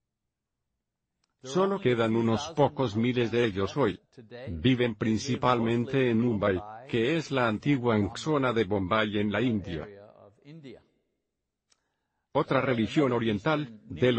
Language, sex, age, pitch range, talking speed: Spanish, male, 50-69, 110-135 Hz, 110 wpm